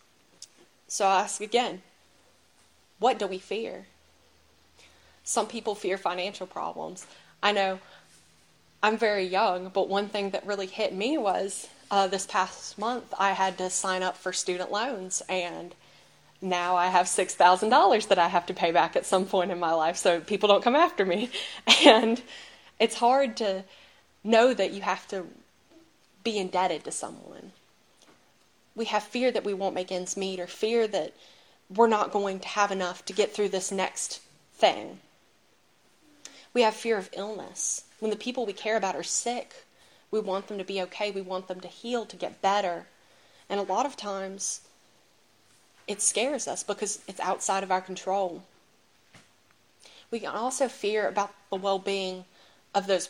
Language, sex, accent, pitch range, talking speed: English, female, American, 185-215 Hz, 165 wpm